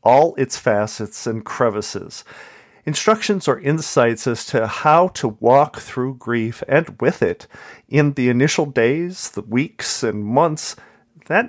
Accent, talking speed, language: American, 140 wpm, English